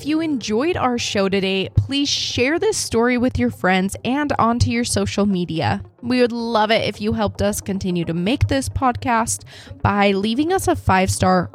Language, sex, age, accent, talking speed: English, female, 20-39, American, 185 wpm